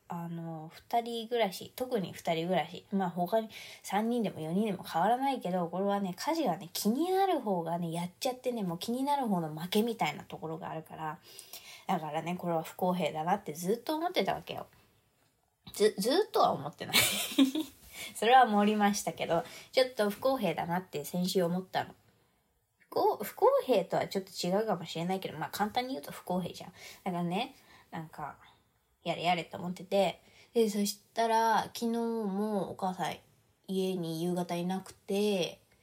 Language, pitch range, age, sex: Japanese, 170-225 Hz, 20-39, female